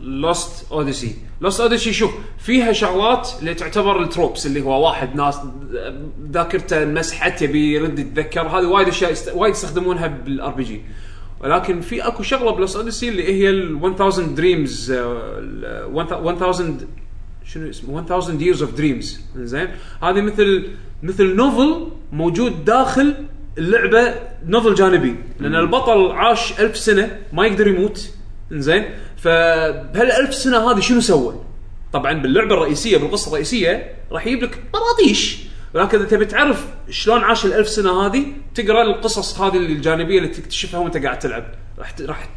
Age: 20-39